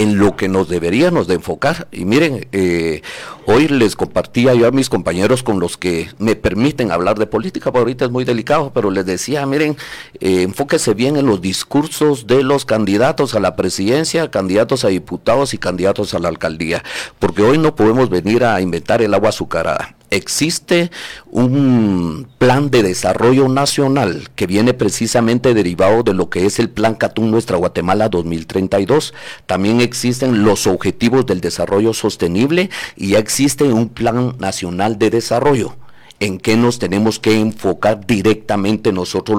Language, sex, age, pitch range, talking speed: Spanish, male, 50-69, 95-125 Hz, 165 wpm